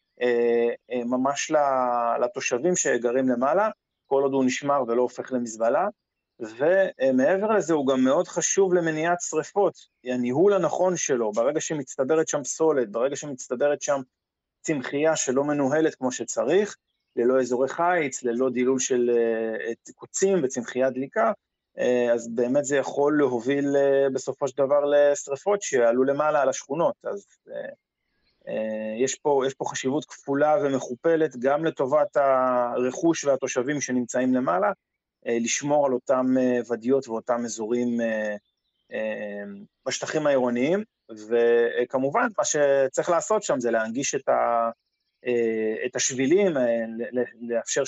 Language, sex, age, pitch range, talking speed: Hebrew, male, 30-49, 120-150 Hz, 115 wpm